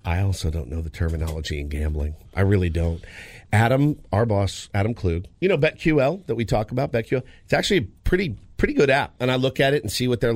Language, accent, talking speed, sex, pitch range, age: English, American, 230 wpm, male, 100-135 Hz, 50-69